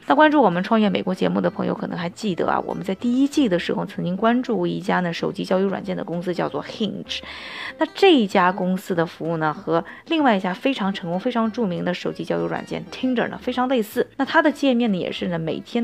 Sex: female